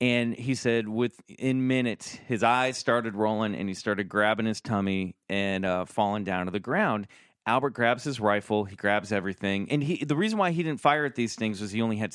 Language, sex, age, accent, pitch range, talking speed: English, male, 30-49, American, 95-120 Hz, 215 wpm